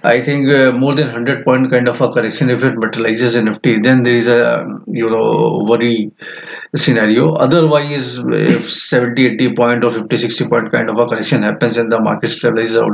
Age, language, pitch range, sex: 20-39, English, 115-135 Hz, male